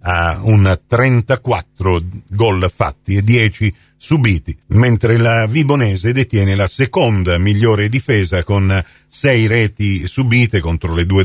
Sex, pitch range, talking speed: male, 95-125 Hz, 125 wpm